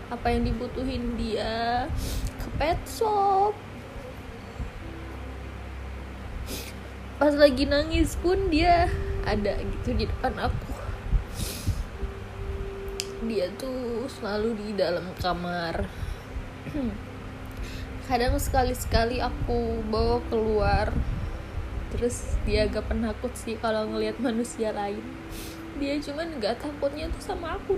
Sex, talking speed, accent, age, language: female, 95 wpm, native, 10-29, Indonesian